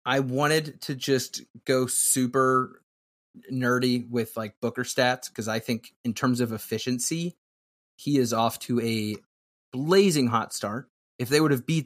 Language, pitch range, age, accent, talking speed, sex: English, 115-150 Hz, 30-49, American, 155 wpm, male